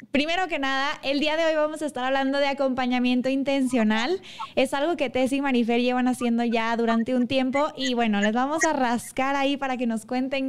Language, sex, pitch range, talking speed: Spanish, female, 240-300 Hz, 210 wpm